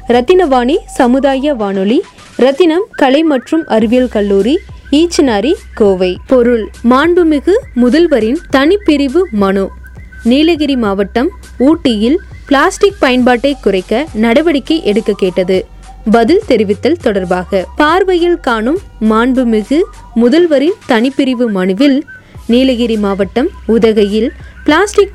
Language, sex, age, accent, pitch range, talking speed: Tamil, female, 20-39, native, 225-310 Hz, 50 wpm